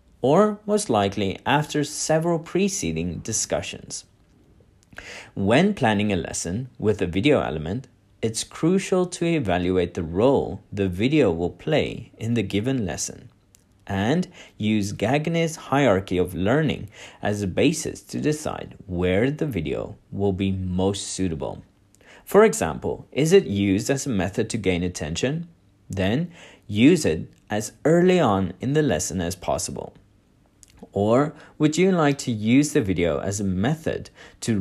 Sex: male